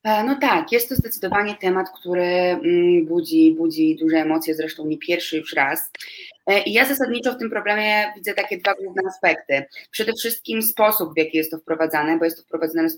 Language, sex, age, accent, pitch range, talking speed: Polish, female, 20-39, native, 175-210 Hz, 185 wpm